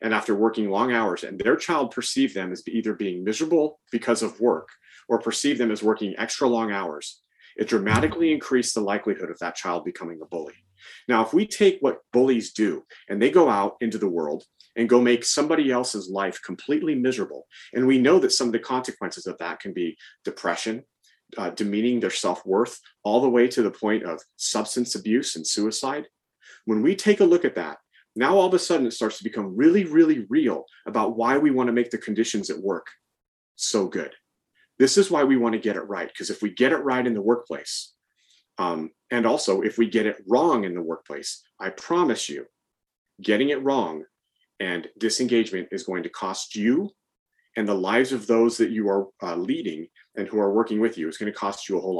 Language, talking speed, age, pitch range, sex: English, 210 wpm, 40-59, 105-130 Hz, male